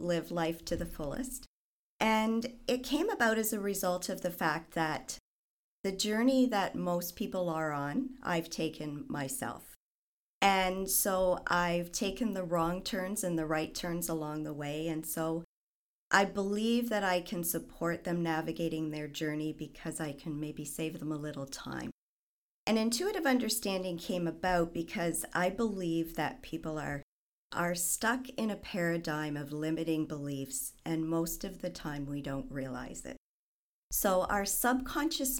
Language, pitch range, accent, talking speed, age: English, 155-200 Hz, American, 155 wpm, 40-59